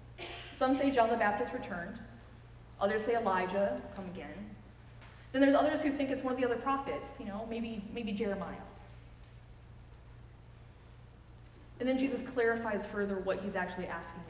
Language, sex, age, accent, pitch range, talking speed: English, female, 20-39, American, 190-255 Hz, 150 wpm